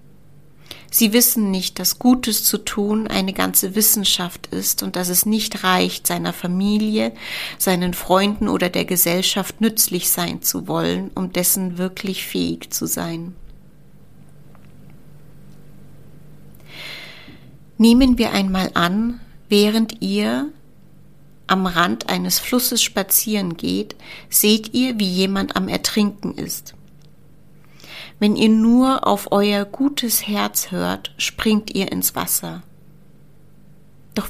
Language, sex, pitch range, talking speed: German, female, 155-215 Hz, 115 wpm